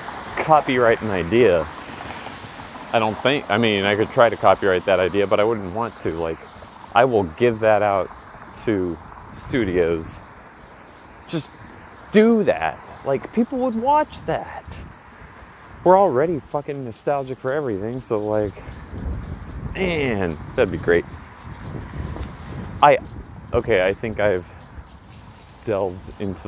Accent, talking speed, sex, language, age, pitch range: American, 125 wpm, male, English, 30-49, 85-120 Hz